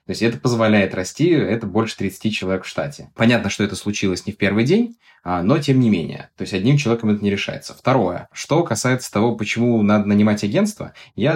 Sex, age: male, 20-39